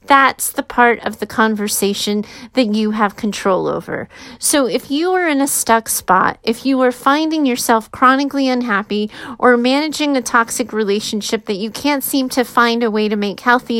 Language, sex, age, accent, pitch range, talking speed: English, female, 30-49, American, 225-275 Hz, 185 wpm